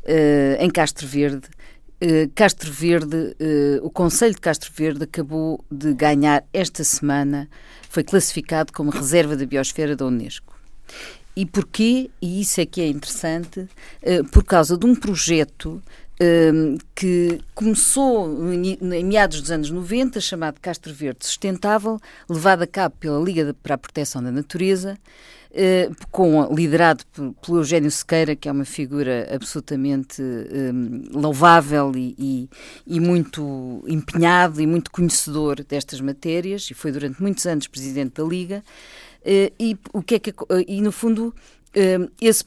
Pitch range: 150-190 Hz